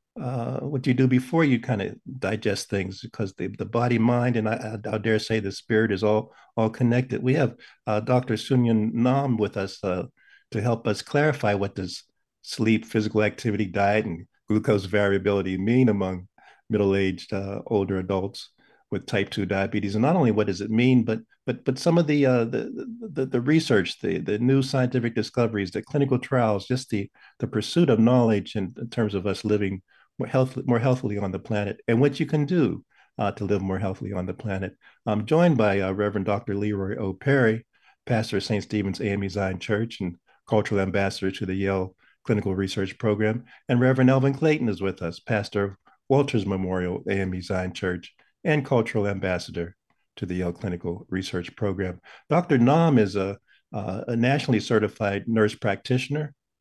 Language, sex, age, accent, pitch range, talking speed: English, male, 50-69, American, 100-125 Hz, 185 wpm